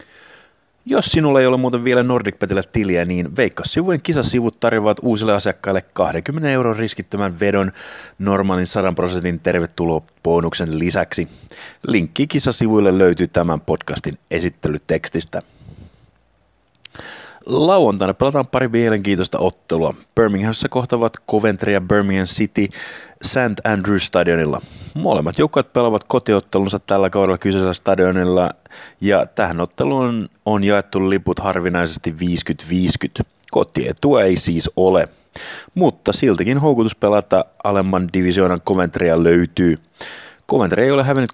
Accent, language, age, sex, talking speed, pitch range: native, Finnish, 30-49, male, 110 wpm, 90-115 Hz